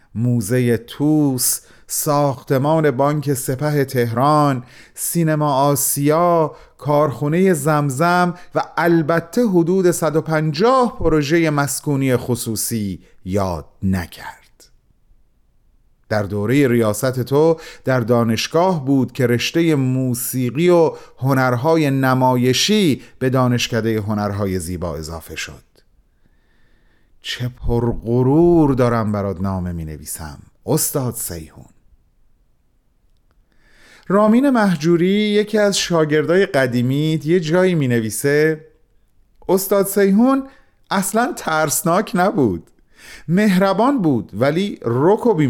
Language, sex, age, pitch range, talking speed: Persian, male, 40-59, 120-175 Hz, 90 wpm